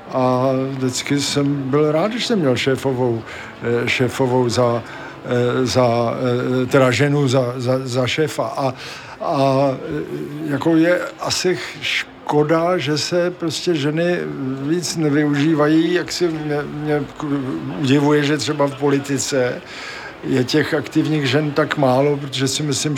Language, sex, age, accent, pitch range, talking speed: Czech, male, 50-69, native, 130-150 Hz, 125 wpm